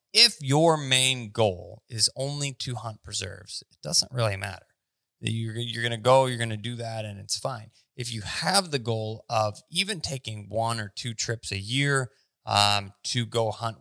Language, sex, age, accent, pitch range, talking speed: English, male, 20-39, American, 105-125 Hz, 180 wpm